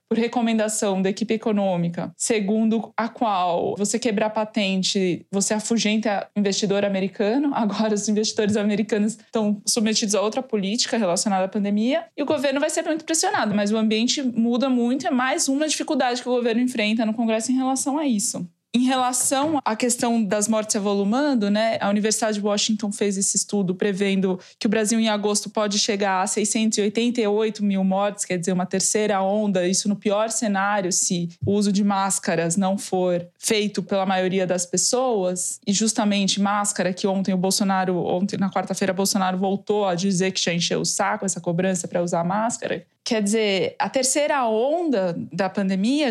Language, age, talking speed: Portuguese, 20-39, 170 wpm